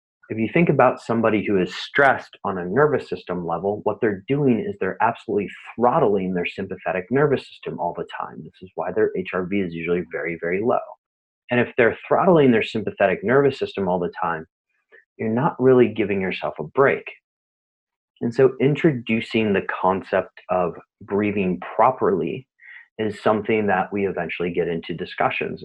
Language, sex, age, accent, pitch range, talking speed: English, male, 30-49, American, 95-125 Hz, 165 wpm